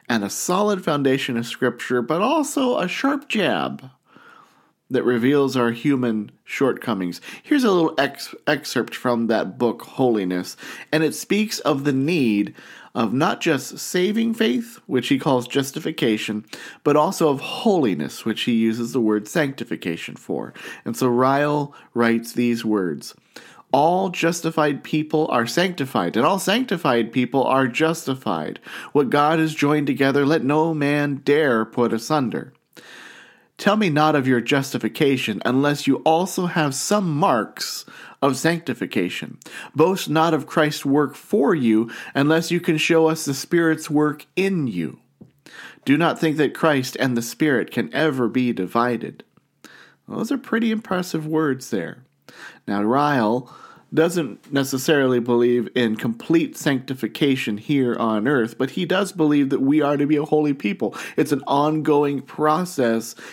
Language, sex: English, male